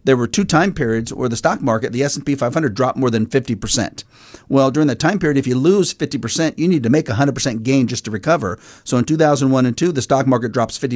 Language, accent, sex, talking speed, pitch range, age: English, American, male, 235 wpm, 125-145 Hz, 40-59